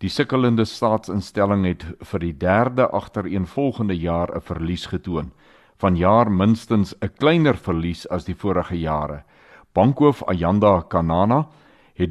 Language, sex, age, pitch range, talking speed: Swedish, male, 60-79, 85-105 Hz, 140 wpm